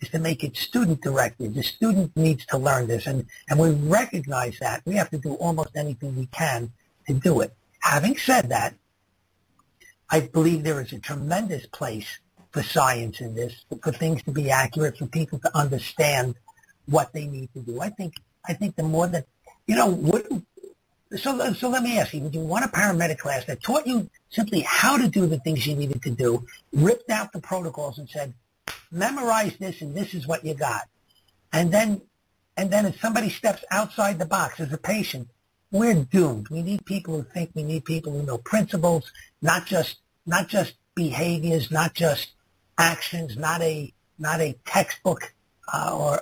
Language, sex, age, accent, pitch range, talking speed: English, male, 60-79, American, 130-180 Hz, 185 wpm